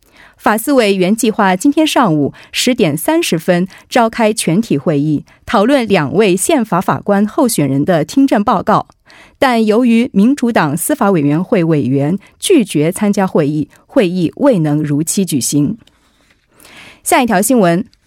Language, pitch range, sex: Korean, 165-260 Hz, female